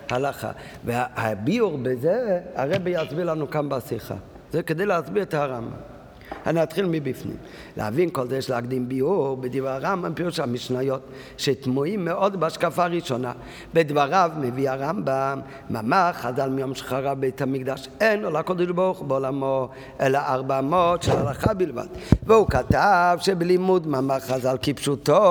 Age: 50-69